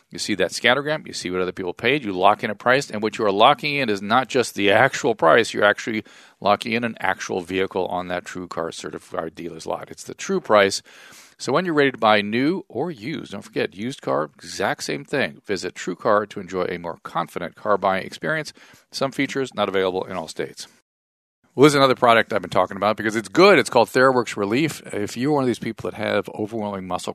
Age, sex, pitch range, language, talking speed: 40-59, male, 95-130 Hz, English, 225 wpm